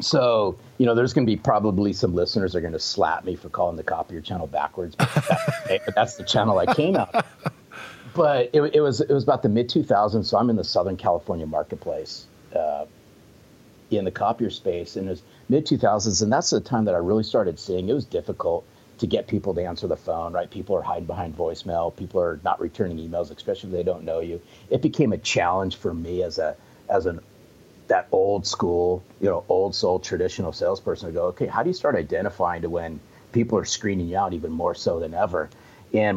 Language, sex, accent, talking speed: English, male, American, 215 wpm